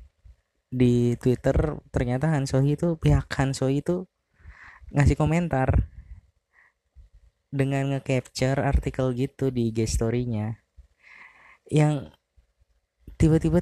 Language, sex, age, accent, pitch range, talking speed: Indonesian, female, 20-39, native, 90-145 Hz, 85 wpm